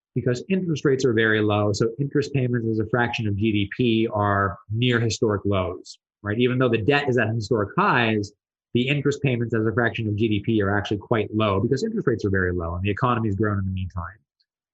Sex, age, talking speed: male, 20-39, 210 wpm